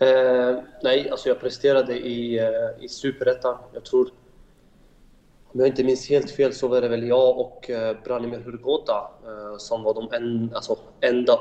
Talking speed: 175 wpm